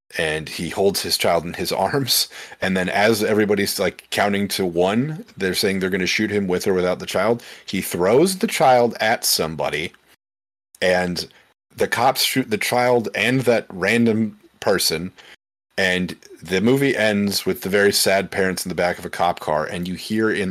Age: 40-59